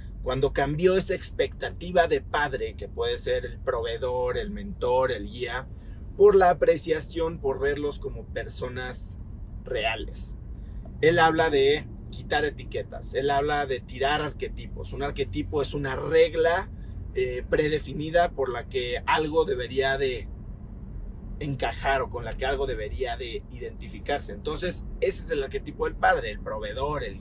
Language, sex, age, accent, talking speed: Spanish, male, 40-59, Mexican, 145 wpm